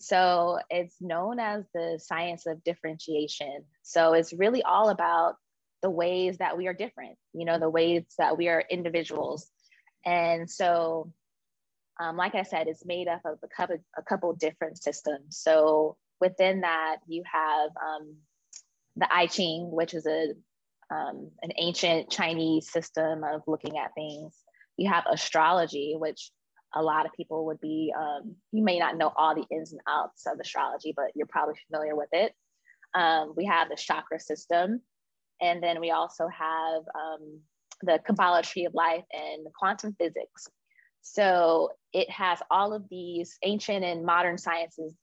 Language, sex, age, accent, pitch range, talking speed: English, female, 20-39, American, 160-175 Hz, 165 wpm